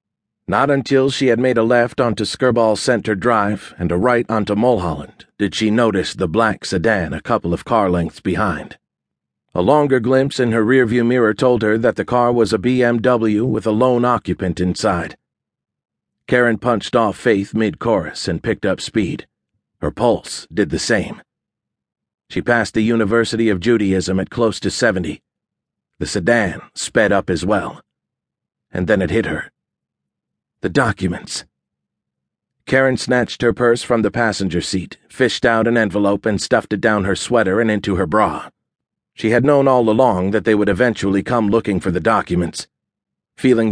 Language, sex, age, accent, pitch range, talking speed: English, male, 50-69, American, 100-120 Hz, 165 wpm